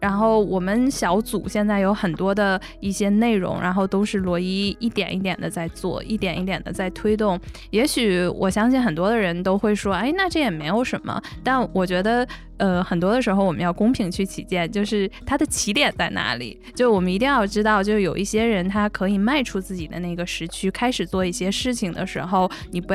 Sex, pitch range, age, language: female, 180-220 Hz, 10-29, Chinese